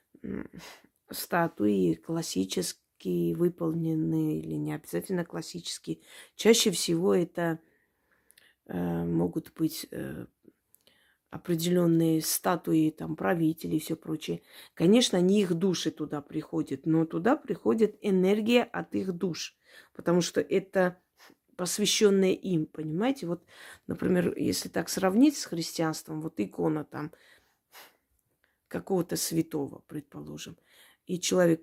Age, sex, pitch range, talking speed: 30-49, female, 155-185 Hz, 105 wpm